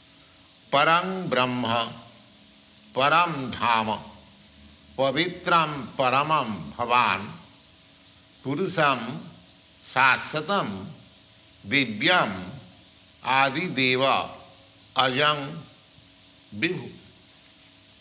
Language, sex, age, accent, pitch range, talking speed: English, male, 60-79, Indian, 90-150 Hz, 45 wpm